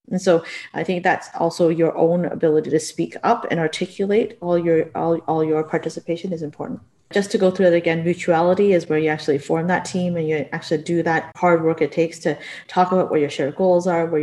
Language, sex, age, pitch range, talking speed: English, female, 30-49, 160-185 Hz, 230 wpm